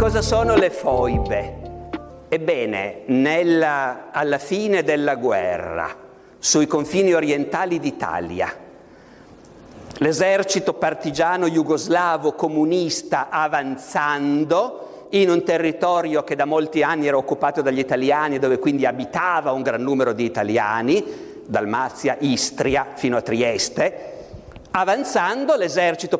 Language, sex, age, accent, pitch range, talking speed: Italian, male, 50-69, native, 140-190 Hz, 105 wpm